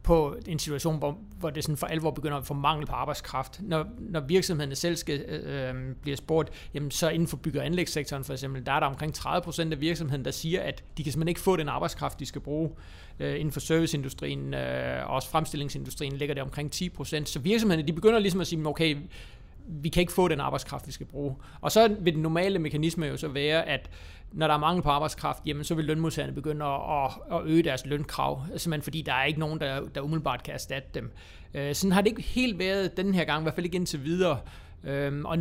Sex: male